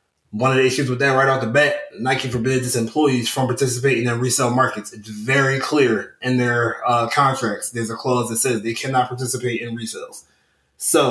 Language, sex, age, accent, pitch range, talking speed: English, male, 20-39, American, 120-135 Hz, 205 wpm